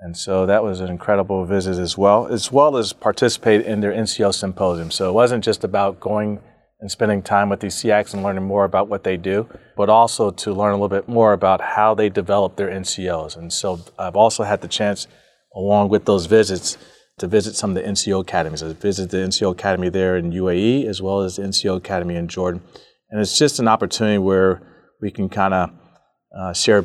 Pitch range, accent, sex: 95-105 Hz, American, male